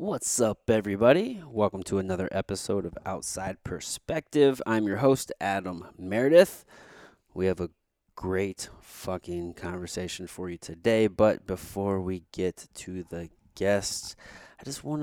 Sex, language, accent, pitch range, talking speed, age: male, English, American, 95-120 Hz, 135 wpm, 20-39